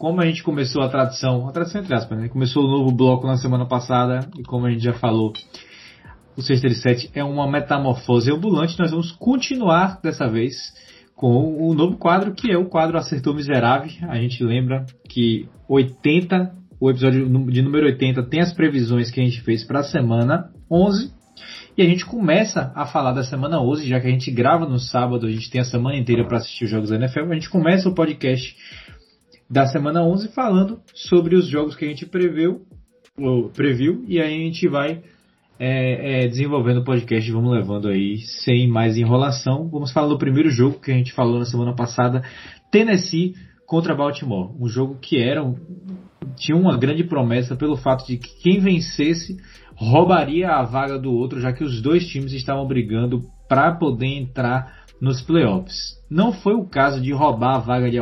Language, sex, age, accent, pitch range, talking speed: Portuguese, male, 20-39, Brazilian, 125-165 Hz, 190 wpm